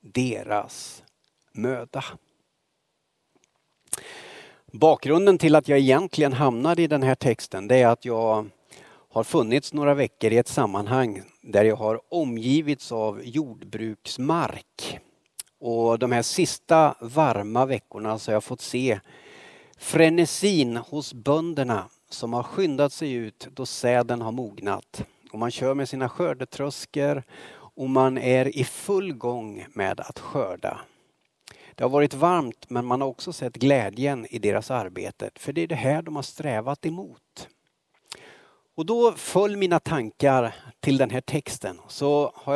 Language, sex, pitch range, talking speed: Swedish, male, 120-150 Hz, 140 wpm